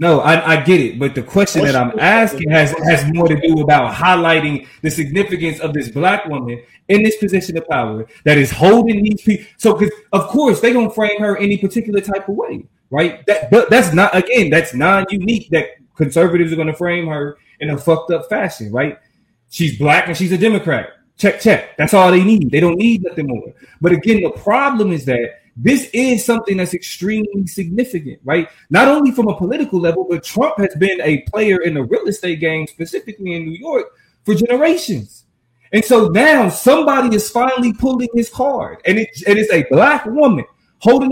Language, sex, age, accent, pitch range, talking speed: English, male, 20-39, American, 160-225 Hz, 200 wpm